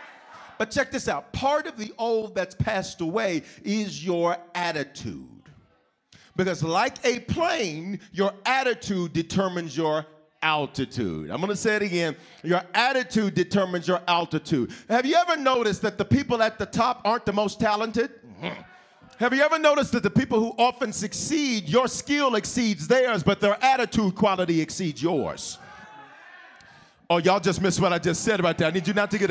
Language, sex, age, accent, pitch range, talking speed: English, male, 40-59, American, 185-245 Hz, 170 wpm